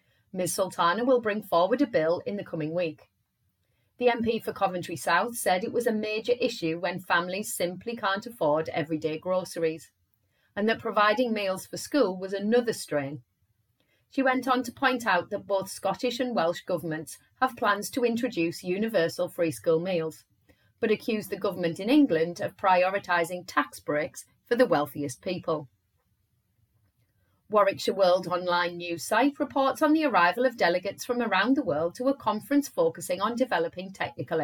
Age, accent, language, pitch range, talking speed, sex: 30-49, British, English, 160-225 Hz, 165 wpm, female